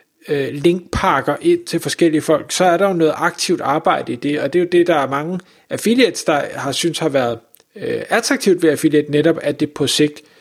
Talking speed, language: 215 wpm, Danish